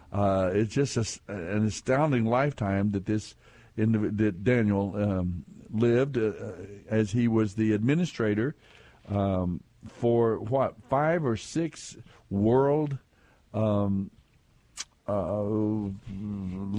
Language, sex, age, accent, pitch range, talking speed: English, male, 60-79, American, 100-125 Hz, 100 wpm